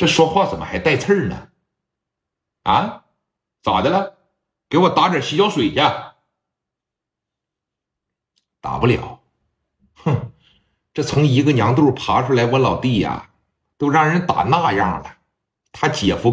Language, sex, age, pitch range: Chinese, male, 60-79, 130-195 Hz